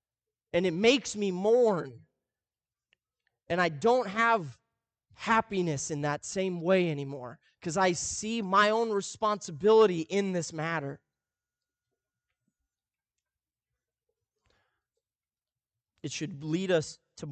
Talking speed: 100 wpm